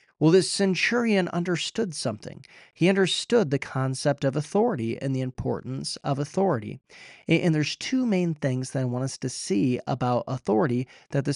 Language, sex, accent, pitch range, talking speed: English, male, American, 130-160 Hz, 165 wpm